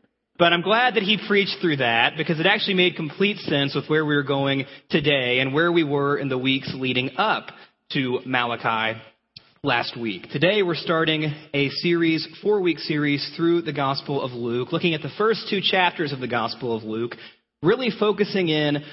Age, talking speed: 30-49, 185 wpm